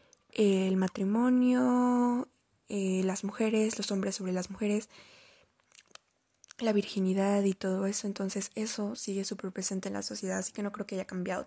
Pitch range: 195-225 Hz